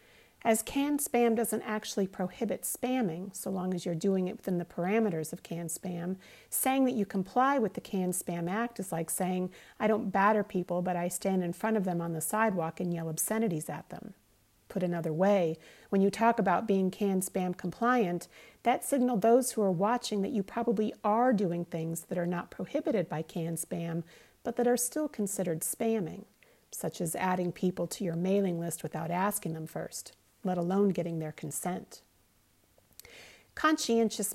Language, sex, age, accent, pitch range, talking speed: English, female, 40-59, American, 175-225 Hz, 175 wpm